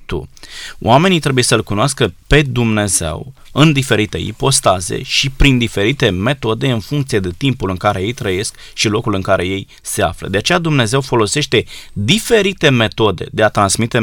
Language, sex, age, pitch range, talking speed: Romanian, male, 20-39, 110-140 Hz, 160 wpm